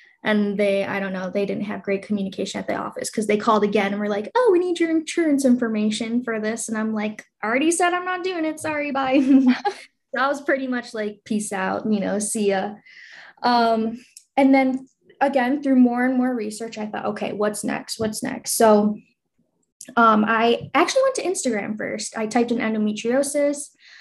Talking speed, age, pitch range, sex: 195 wpm, 10-29, 210-260 Hz, female